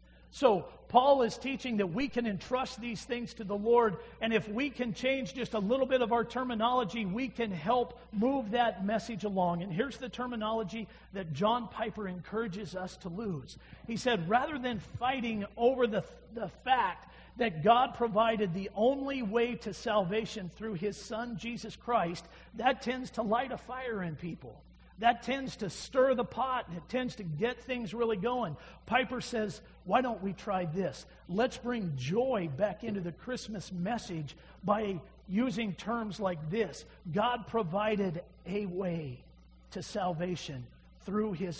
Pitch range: 195-245 Hz